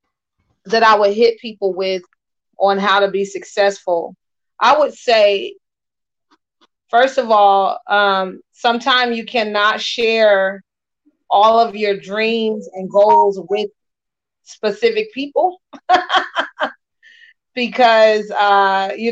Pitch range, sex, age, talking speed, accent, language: 195-230 Hz, female, 30-49, 105 wpm, American, English